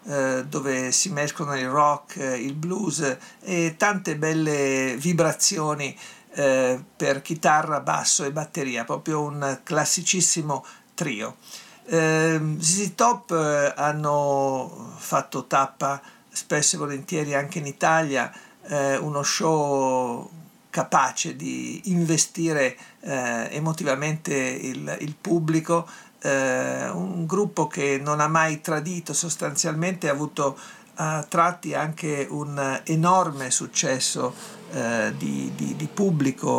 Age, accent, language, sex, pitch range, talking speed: 50-69, native, Italian, male, 135-165 Hz, 100 wpm